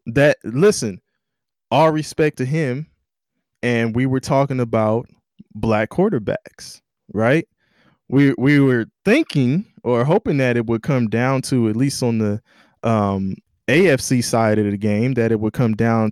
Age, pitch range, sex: 20-39, 105-130 Hz, male